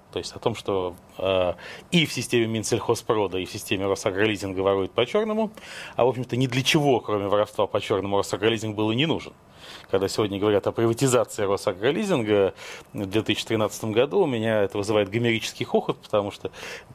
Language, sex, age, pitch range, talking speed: Russian, male, 30-49, 100-140 Hz, 165 wpm